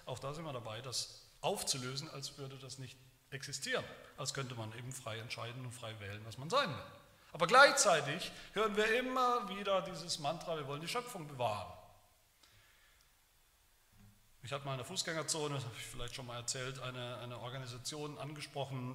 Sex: male